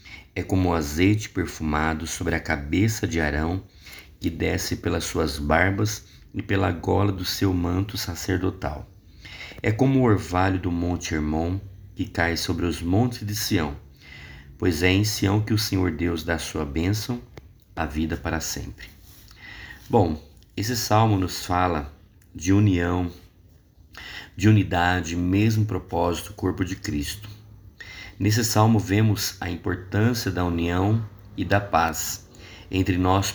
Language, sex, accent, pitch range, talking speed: Portuguese, male, Brazilian, 85-105 Hz, 140 wpm